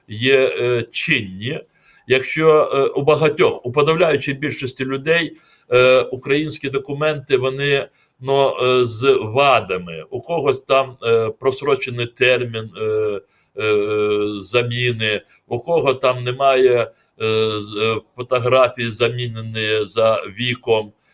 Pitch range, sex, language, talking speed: 120-150 Hz, male, Ukrainian, 105 wpm